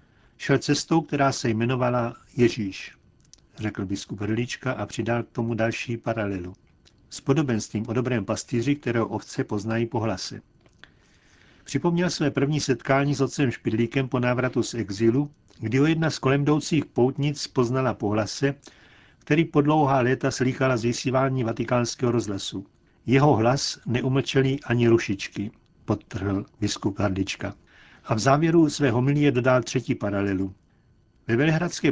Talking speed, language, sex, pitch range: 135 wpm, Czech, male, 115-140 Hz